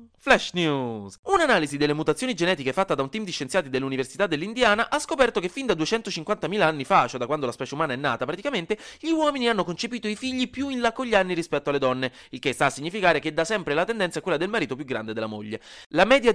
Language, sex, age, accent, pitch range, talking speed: Italian, male, 20-39, native, 130-210 Hz, 240 wpm